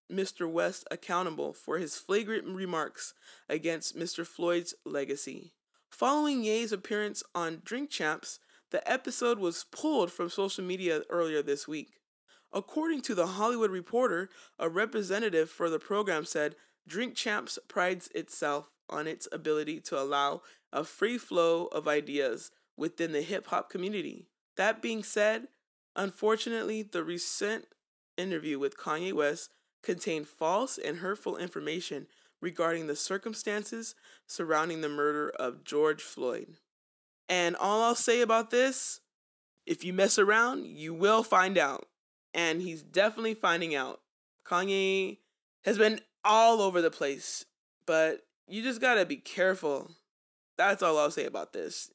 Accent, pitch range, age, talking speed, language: American, 160-220 Hz, 20-39, 135 wpm, English